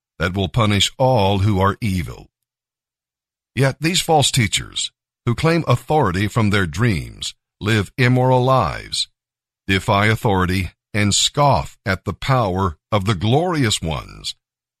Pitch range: 95-125 Hz